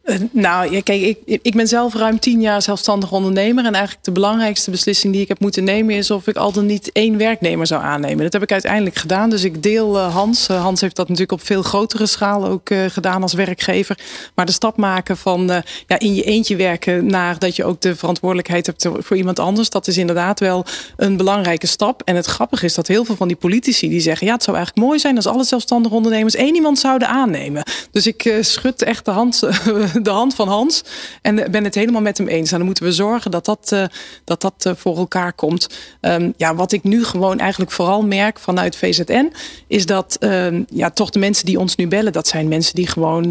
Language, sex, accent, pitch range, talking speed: Dutch, female, Dutch, 180-210 Hz, 235 wpm